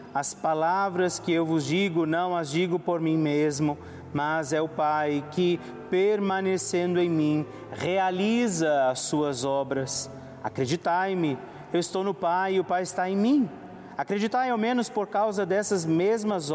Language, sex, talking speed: Portuguese, male, 150 wpm